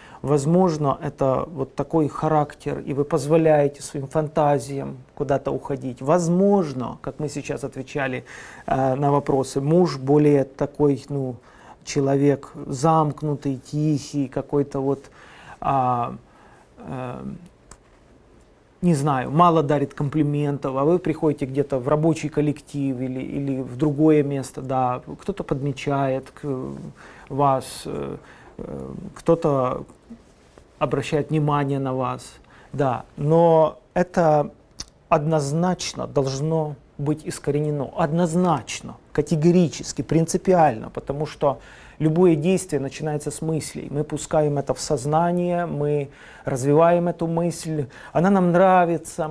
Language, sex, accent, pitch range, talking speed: Russian, male, native, 140-165 Hz, 100 wpm